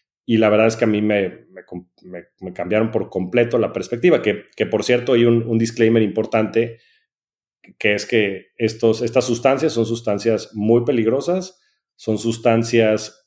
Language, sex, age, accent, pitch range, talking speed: Spanish, male, 40-59, Mexican, 105-120 Hz, 165 wpm